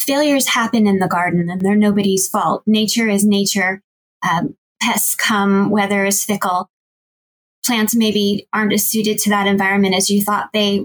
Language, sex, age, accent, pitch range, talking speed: English, female, 20-39, American, 200-230 Hz, 165 wpm